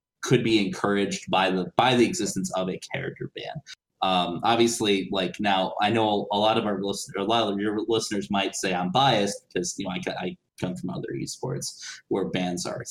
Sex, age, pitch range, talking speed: male, 20-39, 95-115 Hz, 200 wpm